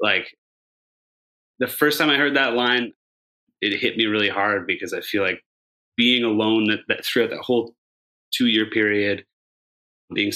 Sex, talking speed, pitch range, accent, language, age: male, 160 wpm, 95-110 Hz, American, English, 30-49